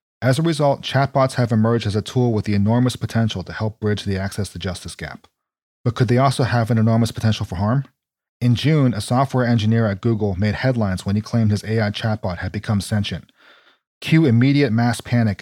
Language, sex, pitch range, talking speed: English, male, 105-125 Hz, 205 wpm